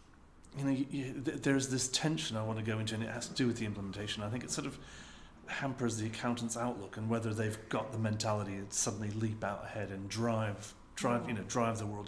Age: 40-59